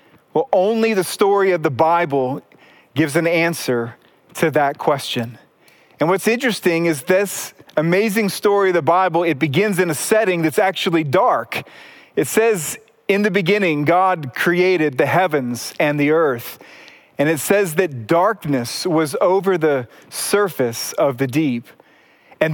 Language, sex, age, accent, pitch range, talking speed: English, male, 40-59, American, 160-205 Hz, 150 wpm